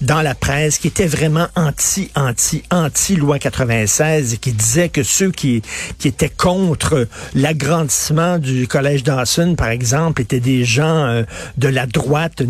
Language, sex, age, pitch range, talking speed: French, male, 50-69, 130-165 Hz, 145 wpm